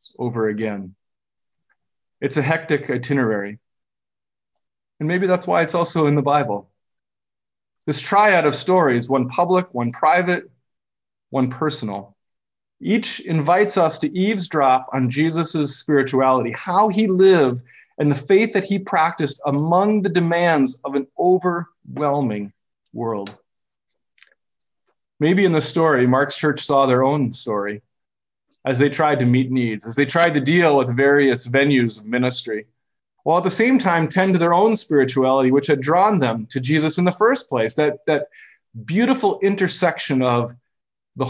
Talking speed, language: 145 wpm, English